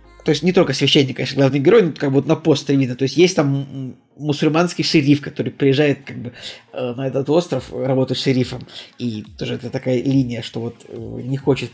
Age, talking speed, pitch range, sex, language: 20-39, 195 wpm, 130-155 Hz, male, Russian